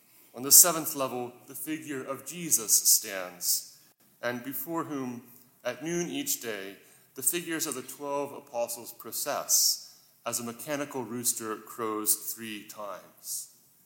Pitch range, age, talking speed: 120-145 Hz, 30-49, 130 wpm